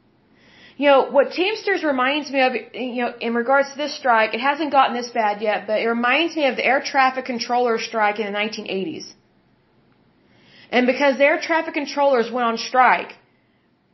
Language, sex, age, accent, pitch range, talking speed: German, female, 30-49, American, 220-280 Hz, 175 wpm